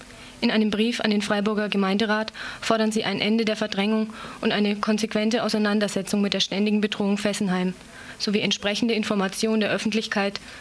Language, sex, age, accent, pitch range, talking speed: German, female, 20-39, German, 205-230 Hz, 155 wpm